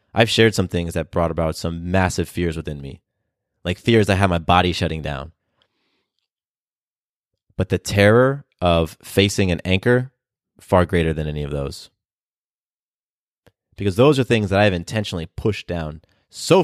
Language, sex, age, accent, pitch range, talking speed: English, male, 30-49, American, 95-130 Hz, 160 wpm